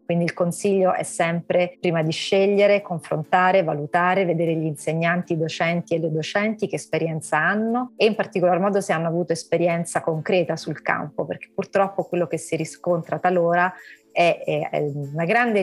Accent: native